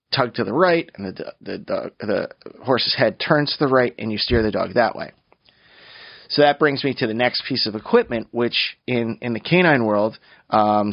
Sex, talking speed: male, 215 wpm